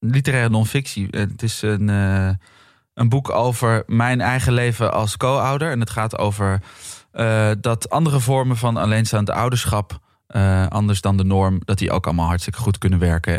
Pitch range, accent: 95-115 Hz, Dutch